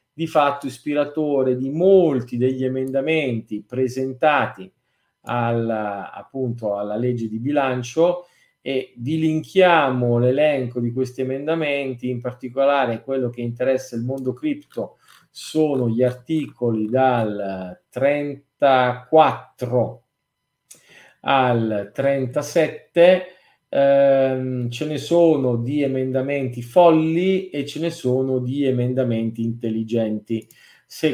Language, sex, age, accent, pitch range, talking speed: Italian, male, 40-59, native, 120-145 Hz, 95 wpm